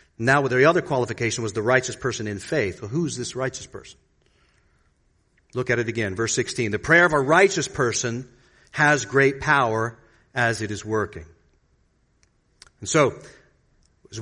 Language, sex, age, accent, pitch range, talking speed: English, male, 40-59, American, 110-150 Hz, 160 wpm